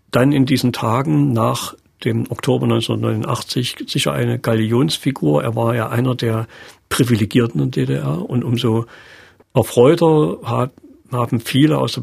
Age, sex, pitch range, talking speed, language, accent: 50-69, male, 115-135 Hz, 135 wpm, German, German